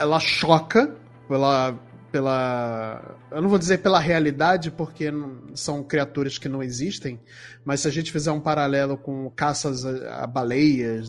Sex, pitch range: male, 135-170 Hz